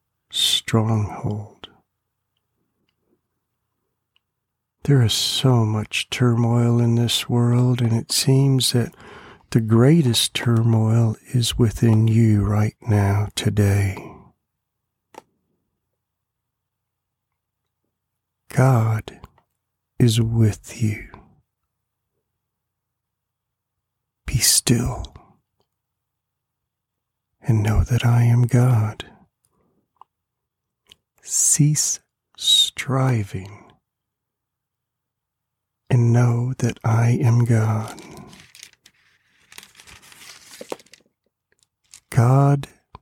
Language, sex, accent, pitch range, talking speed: English, male, American, 110-125 Hz, 60 wpm